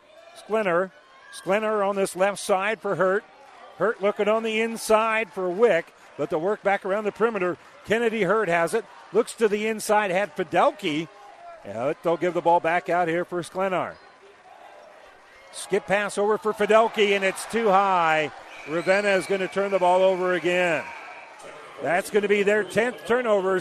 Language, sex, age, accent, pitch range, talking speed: English, male, 50-69, American, 175-215 Hz, 170 wpm